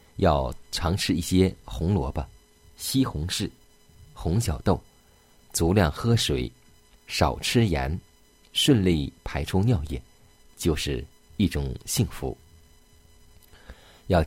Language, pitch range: Chinese, 80-95 Hz